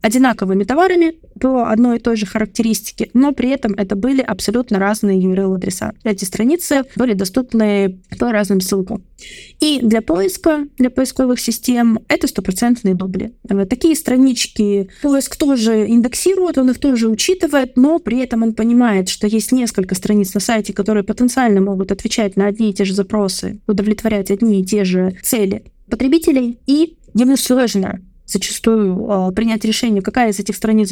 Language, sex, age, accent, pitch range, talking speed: Russian, female, 20-39, native, 200-255 Hz, 150 wpm